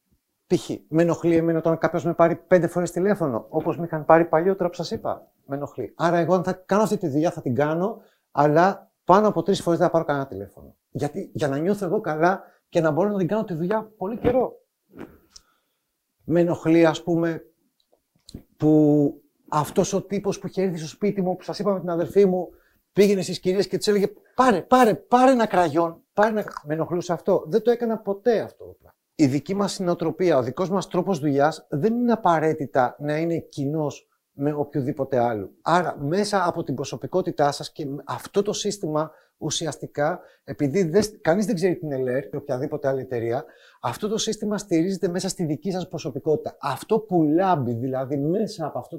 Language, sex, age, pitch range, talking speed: Greek, male, 60-79, 150-195 Hz, 190 wpm